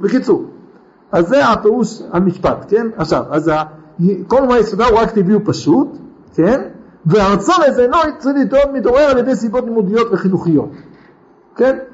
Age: 50-69